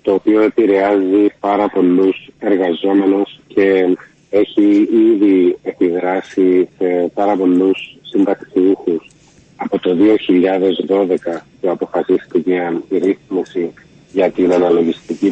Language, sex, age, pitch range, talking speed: Greek, male, 40-59, 90-110 Hz, 95 wpm